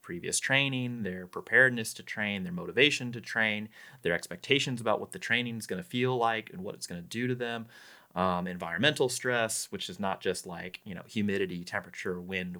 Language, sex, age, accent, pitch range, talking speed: English, male, 30-49, American, 90-115 Hz, 200 wpm